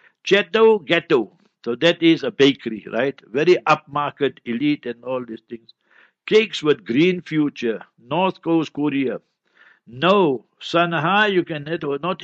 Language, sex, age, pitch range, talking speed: English, male, 60-79, 145-180 Hz, 125 wpm